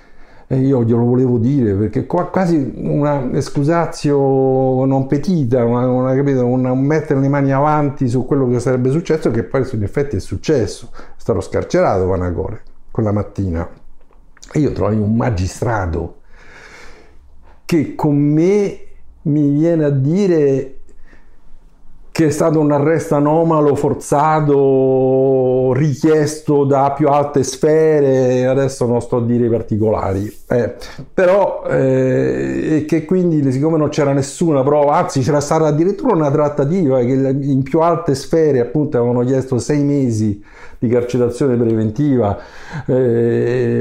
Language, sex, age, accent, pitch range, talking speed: Italian, male, 50-69, native, 120-150 Hz, 135 wpm